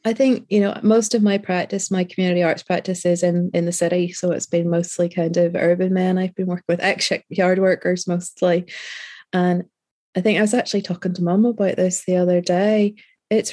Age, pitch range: 20-39, 180-210 Hz